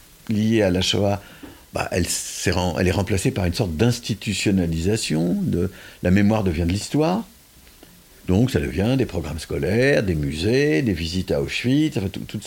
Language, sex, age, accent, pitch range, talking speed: French, male, 60-79, French, 95-135 Hz, 160 wpm